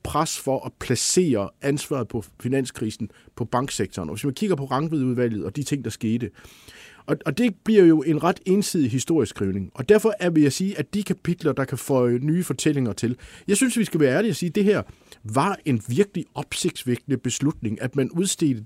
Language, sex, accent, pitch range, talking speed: Danish, male, native, 125-165 Hz, 205 wpm